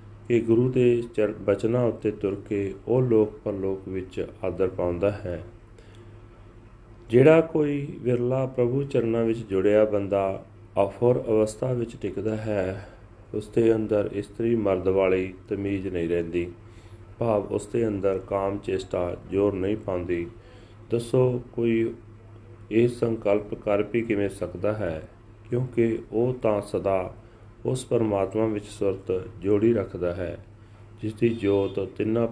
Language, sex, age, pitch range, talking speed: Punjabi, male, 40-59, 100-115 Hz, 110 wpm